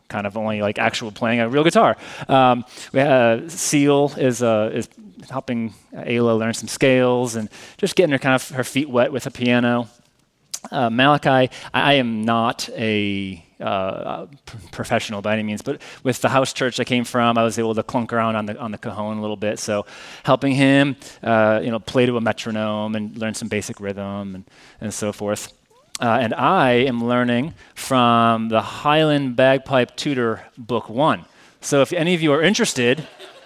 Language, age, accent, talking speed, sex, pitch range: English, 30-49, American, 185 wpm, male, 115-140 Hz